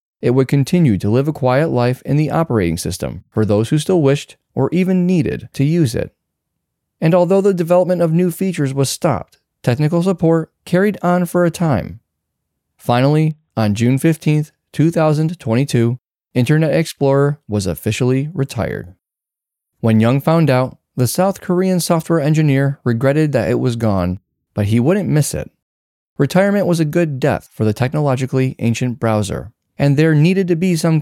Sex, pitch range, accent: male, 115-165 Hz, American